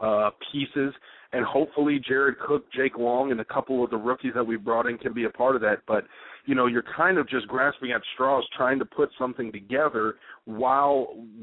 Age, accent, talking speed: 30-49, American, 210 wpm